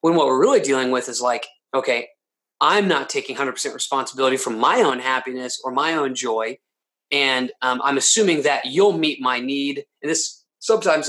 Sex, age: male, 30-49